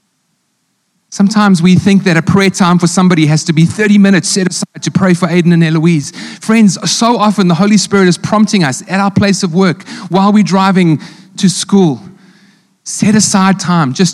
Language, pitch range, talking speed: English, 165-205 Hz, 190 wpm